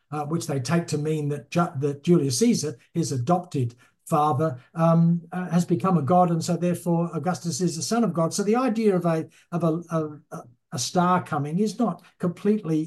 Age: 60-79